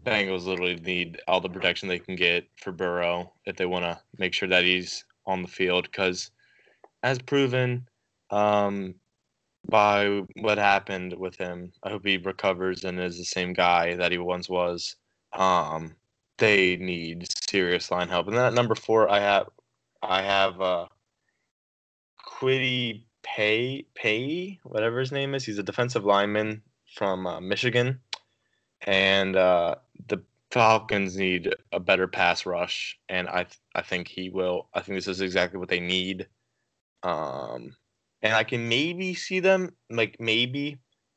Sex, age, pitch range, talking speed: male, 20-39, 90-110 Hz, 155 wpm